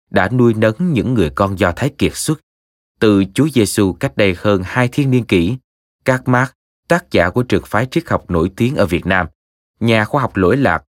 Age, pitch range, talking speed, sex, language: 20-39, 85-115 Hz, 215 wpm, male, Vietnamese